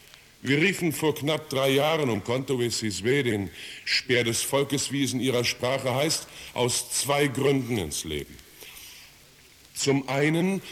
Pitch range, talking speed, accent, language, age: 130-170 Hz, 130 wpm, German, German, 60-79